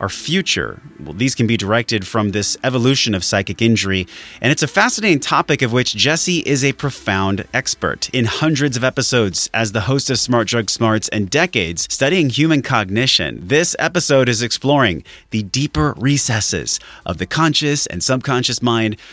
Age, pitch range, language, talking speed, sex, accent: 30-49, 100-135 Hz, English, 170 wpm, male, American